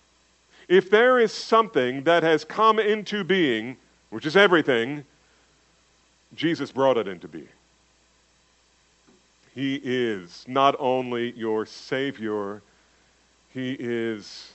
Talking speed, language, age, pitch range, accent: 105 wpm, English, 50-69, 100-155 Hz, American